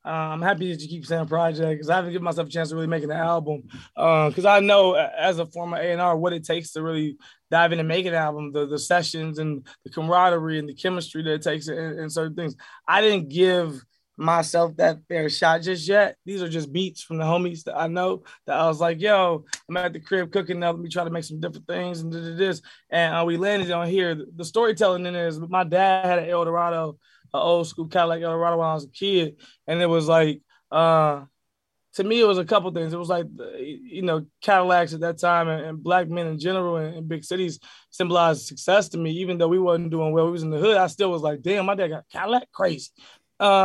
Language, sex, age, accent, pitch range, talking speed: English, male, 20-39, American, 160-185 Hz, 245 wpm